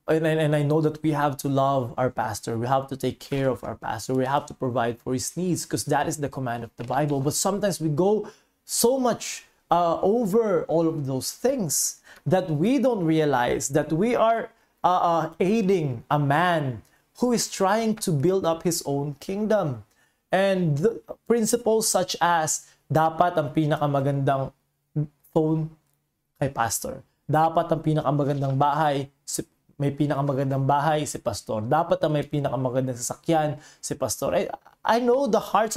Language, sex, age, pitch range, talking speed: Filipino, male, 20-39, 140-180 Hz, 165 wpm